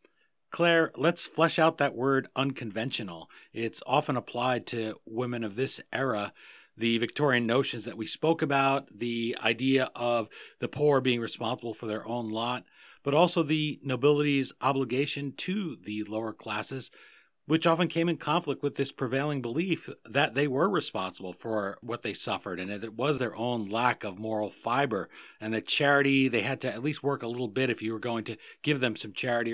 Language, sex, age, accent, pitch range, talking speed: English, male, 40-59, American, 115-145 Hz, 180 wpm